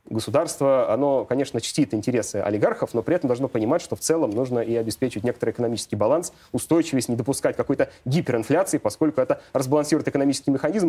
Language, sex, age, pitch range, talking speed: Russian, male, 30-49, 115-160 Hz, 165 wpm